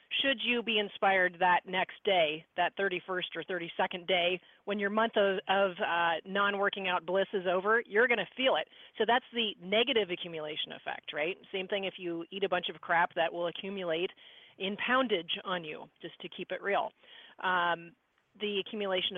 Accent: American